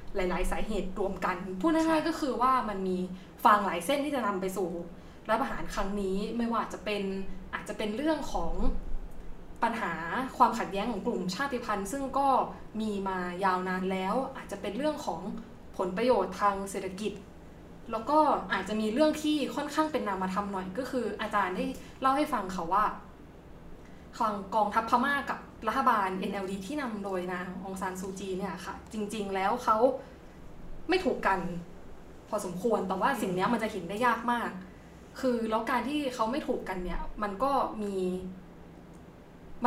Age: 20-39